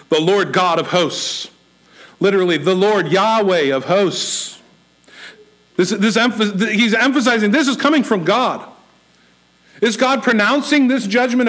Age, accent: 50-69, American